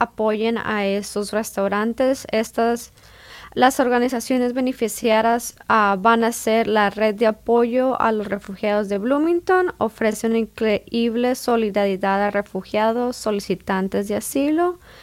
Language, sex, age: English, female, 20-39